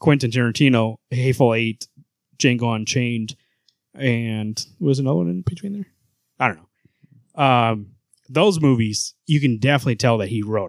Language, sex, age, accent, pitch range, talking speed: English, male, 30-49, American, 115-135 Hz, 145 wpm